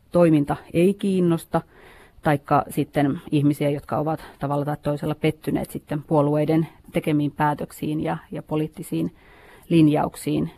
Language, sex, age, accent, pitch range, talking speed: Finnish, female, 30-49, native, 150-165 Hz, 115 wpm